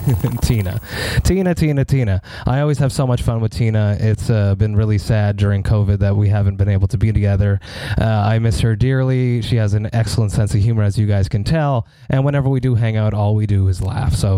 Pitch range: 105-125 Hz